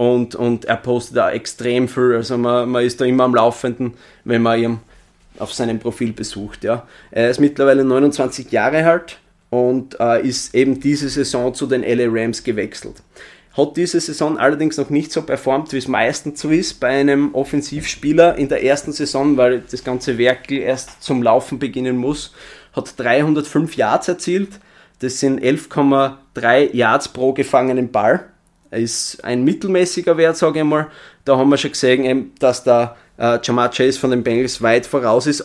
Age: 20-39